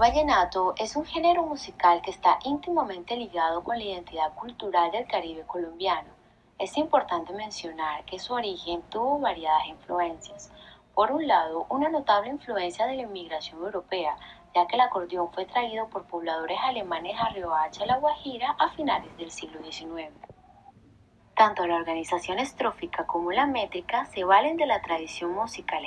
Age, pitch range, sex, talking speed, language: 20-39, 170-255 Hz, female, 160 wpm, Spanish